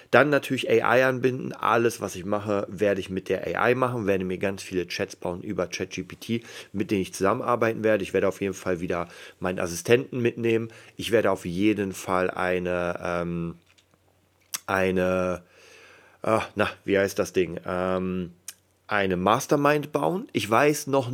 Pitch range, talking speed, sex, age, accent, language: 90-110 Hz, 160 wpm, male, 30-49, German, German